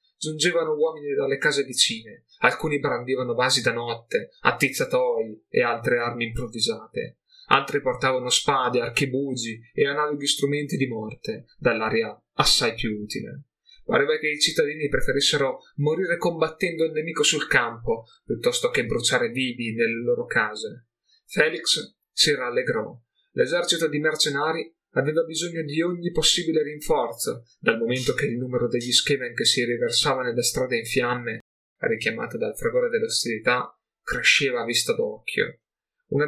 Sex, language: male, Italian